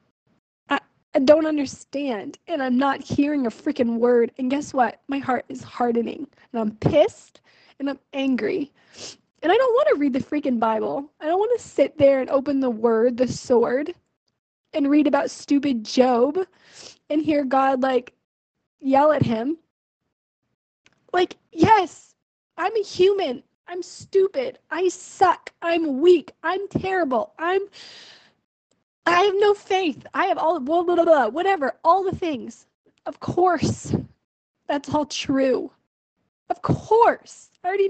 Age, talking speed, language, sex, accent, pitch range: 20-39, 150 wpm, English, female, American, 265-335 Hz